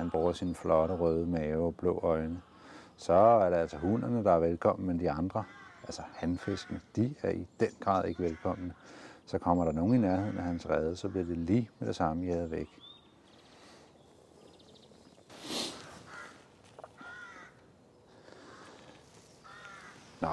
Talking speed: 140 wpm